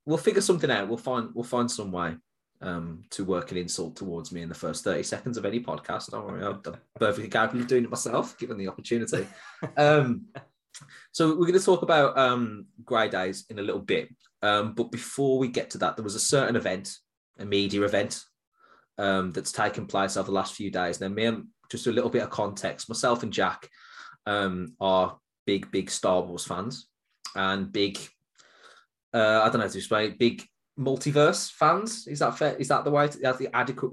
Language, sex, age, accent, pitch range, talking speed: English, male, 20-39, British, 95-125 Hz, 205 wpm